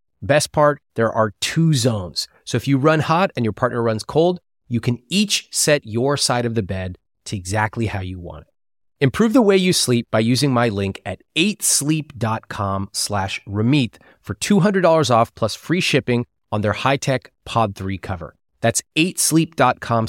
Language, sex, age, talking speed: English, male, 30-49, 175 wpm